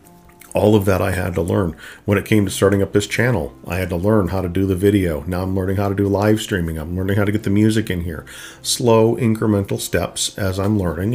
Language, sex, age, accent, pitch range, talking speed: English, male, 50-69, American, 90-110 Hz, 255 wpm